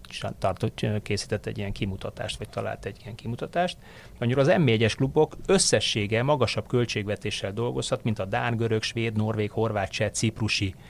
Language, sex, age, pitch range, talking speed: Hungarian, male, 30-49, 100-120 Hz, 150 wpm